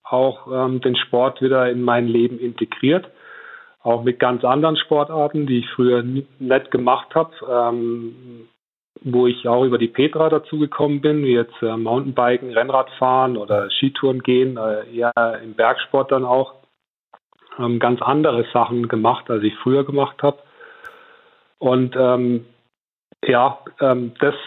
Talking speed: 145 wpm